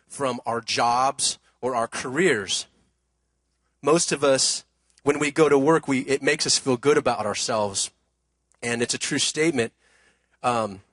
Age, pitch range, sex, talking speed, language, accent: 30-49, 115-160 Hz, male, 155 wpm, English, American